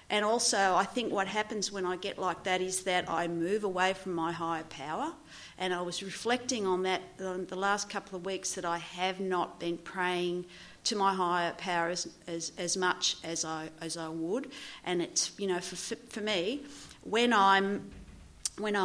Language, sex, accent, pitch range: English, female, Australian, 180-235 Hz